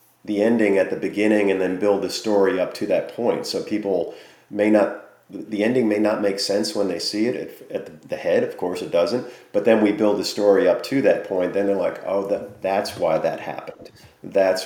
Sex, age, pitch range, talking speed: male, 40-59, 100-125 Hz, 225 wpm